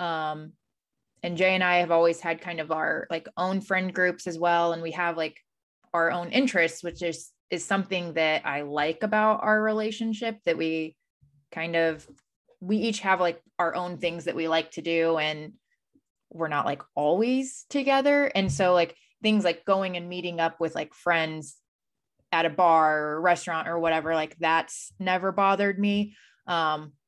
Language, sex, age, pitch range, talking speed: English, female, 20-39, 160-190 Hz, 180 wpm